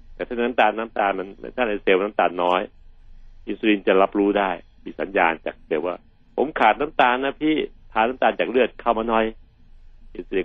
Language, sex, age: Thai, male, 60-79